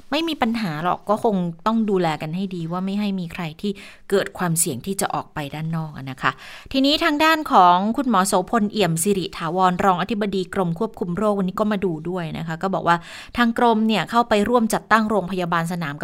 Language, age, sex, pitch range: Thai, 20-39, female, 170-210 Hz